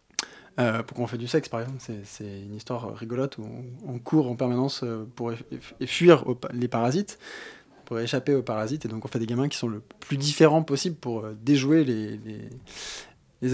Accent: French